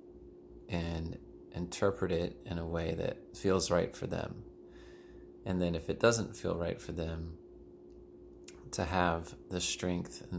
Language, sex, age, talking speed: English, male, 30-49, 145 wpm